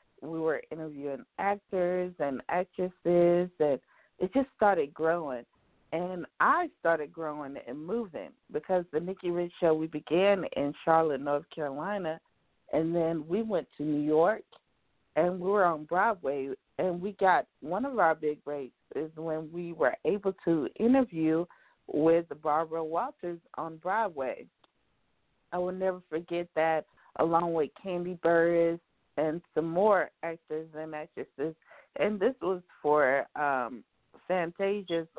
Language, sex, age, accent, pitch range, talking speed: English, female, 40-59, American, 160-195 Hz, 140 wpm